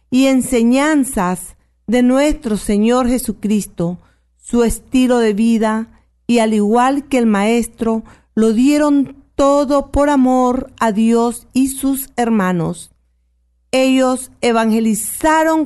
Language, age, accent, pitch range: Spanish, 40-59, American, 210-270 Hz